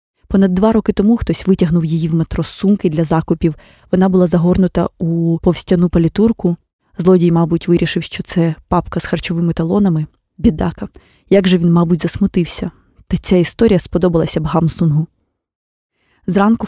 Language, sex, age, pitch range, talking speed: Ukrainian, female, 20-39, 175-200 Hz, 145 wpm